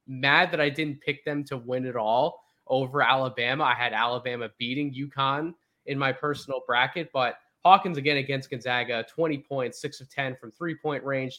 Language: English